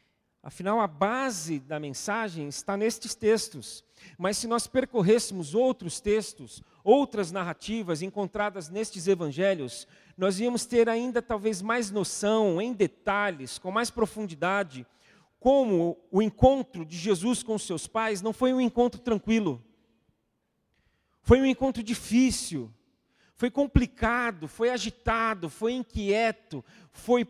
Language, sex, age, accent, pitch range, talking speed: Portuguese, male, 40-59, Brazilian, 185-240 Hz, 125 wpm